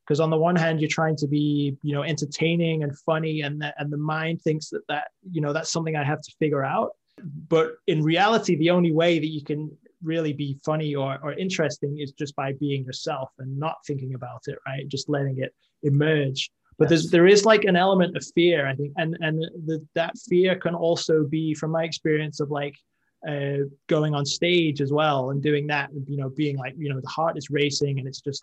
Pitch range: 140-160 Hz